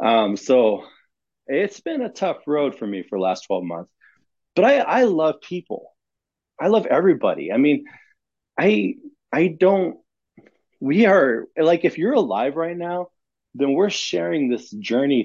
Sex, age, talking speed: male, 30-49, 155 wpm